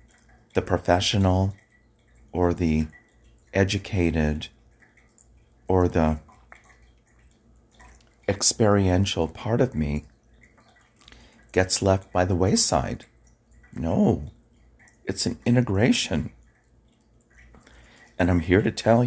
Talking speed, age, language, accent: 80 wpm, 40-59, English, American